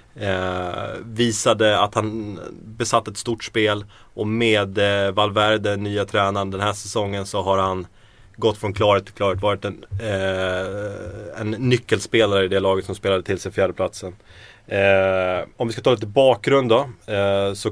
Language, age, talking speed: Swedish, 30-49, 165 wpm